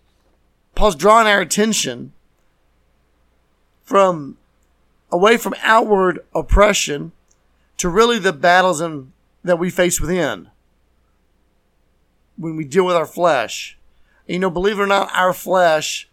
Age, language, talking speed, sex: 50-69, English, 125 wpm, male